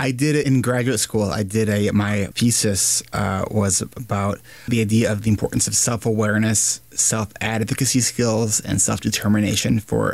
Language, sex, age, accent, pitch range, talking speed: English, male, 20-39, American, 105-125 Hz, 155 wpm